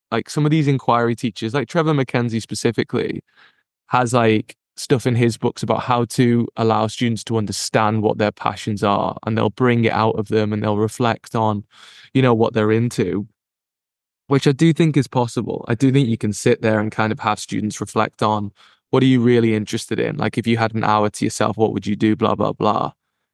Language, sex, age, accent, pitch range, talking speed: English, male, 20-39, British, 110-135 Hz, 215 wpm